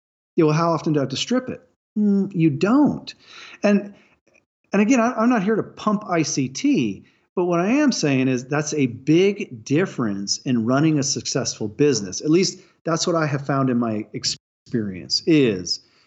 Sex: male